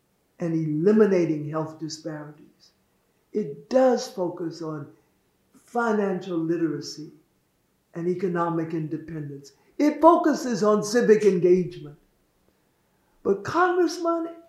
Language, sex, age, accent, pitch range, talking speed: English, male, 60-79, American, 180-270 Hz, 85 wpm